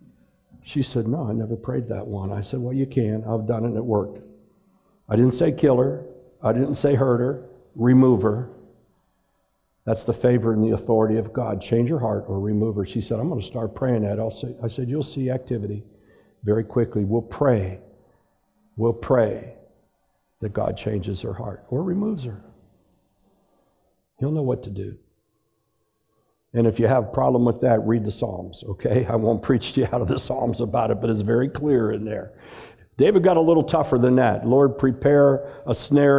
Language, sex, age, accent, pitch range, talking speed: English, male, 60-79, American, 110-130 Hz, 195 wpm